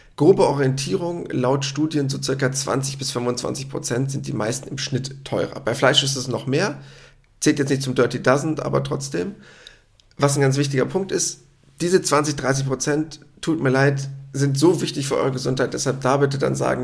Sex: male